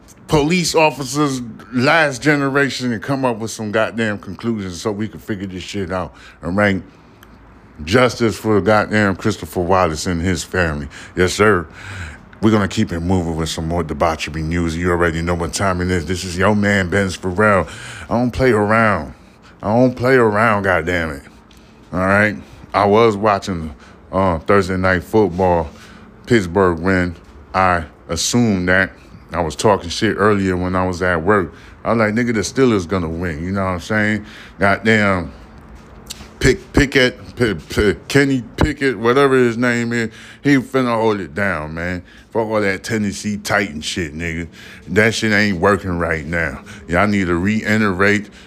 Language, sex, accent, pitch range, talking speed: English, male, American, 85-110 Hz, 170 wpm